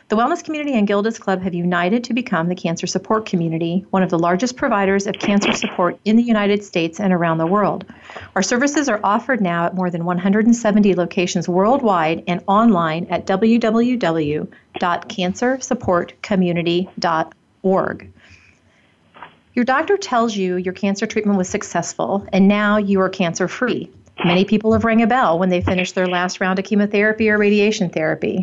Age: 40-59